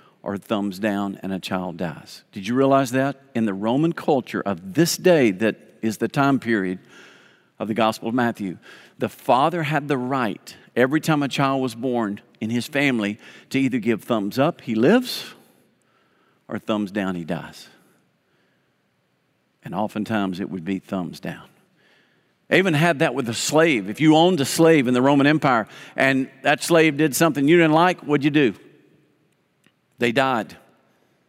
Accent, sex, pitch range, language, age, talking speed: American, male, 110-145 Hz, English, 50-69, 175 wpm